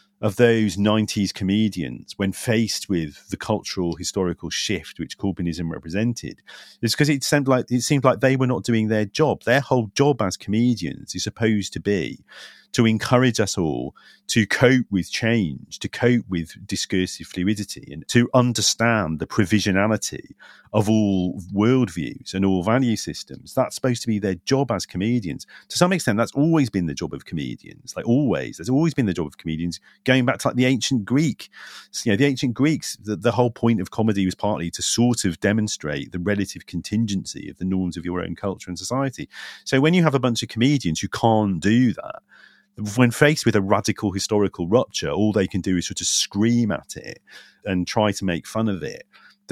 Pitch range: 90-120 Hz